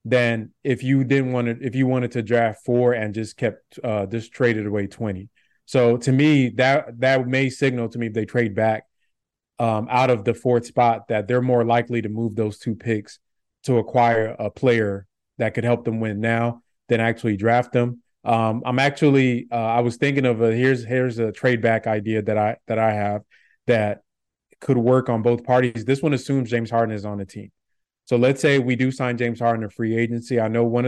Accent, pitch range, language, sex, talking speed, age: American, 115-130 Hz, English, male, 215 wpm, 20-39